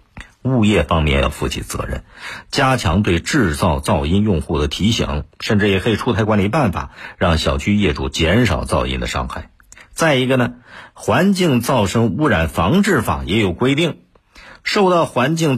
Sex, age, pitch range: male, 50-69, 85-125 Hz